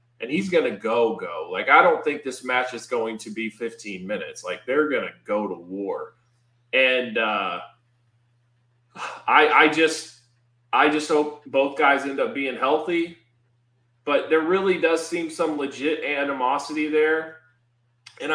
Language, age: English, 20-39